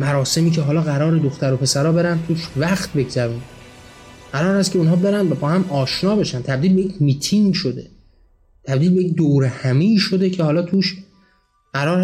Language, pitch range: Persian, 125-165 Hz